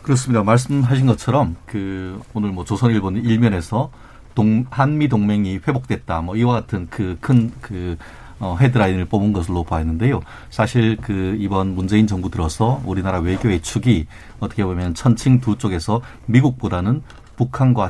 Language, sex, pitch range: Korean, male, 90-120 Hz